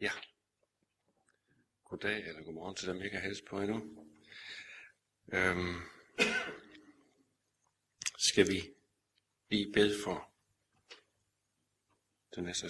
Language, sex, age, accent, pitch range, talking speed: Danish, male, 60-79, native, 90-120 Hz, 95 wpm